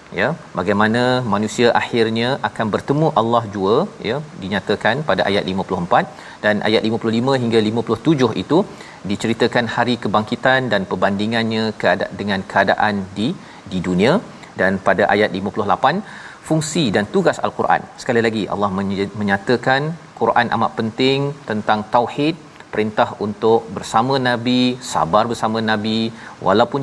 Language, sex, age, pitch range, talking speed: Malayalam, male, 40-59, 105-125 Hz, 125 wpm